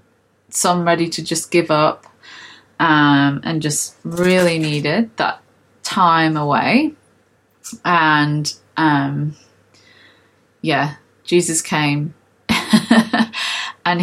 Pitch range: 150-190 Hz